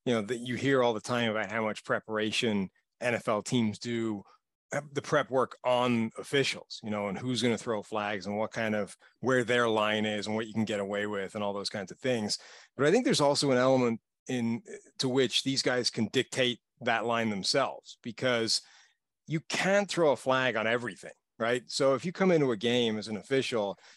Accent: American